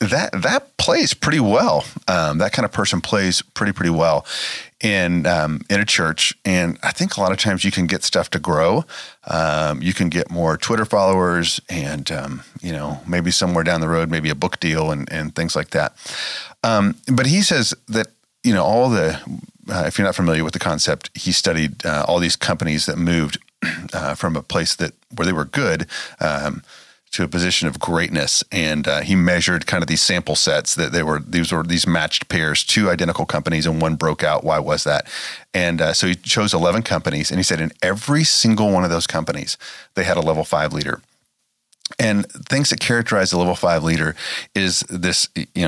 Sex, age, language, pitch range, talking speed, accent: male, 40-59, English, 80-100 Hz, 210 wpm, American